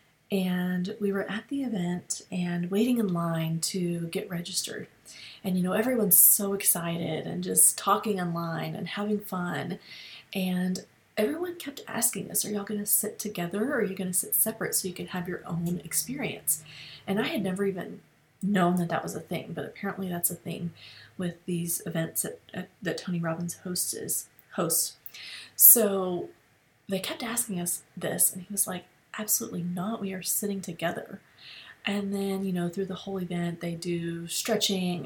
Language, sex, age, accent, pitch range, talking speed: English, female, 30-49, American, 170-200 Hz, 175 wpm